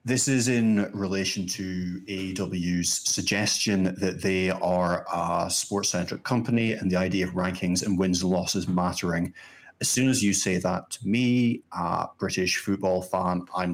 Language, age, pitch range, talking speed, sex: English, 30-49, 90-105 Hz, 155 wpm, male